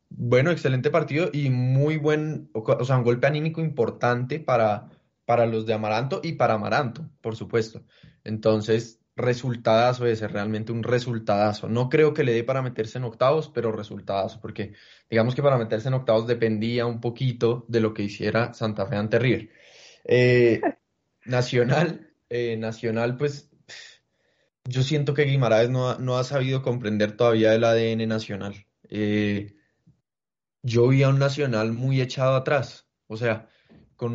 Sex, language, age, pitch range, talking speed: male, Spanish, 20-39, 110-130 Hz, 155 wpm